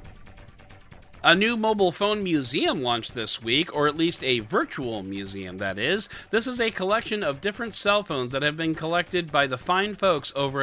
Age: 40-59